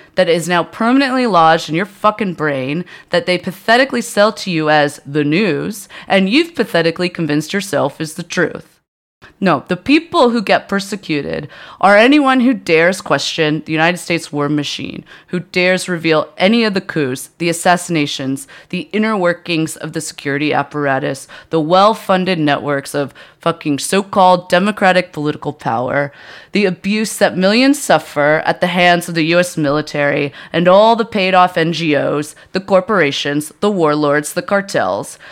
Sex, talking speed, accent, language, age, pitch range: female, 155 wpm, American, English, 30-49, 155-200 Hz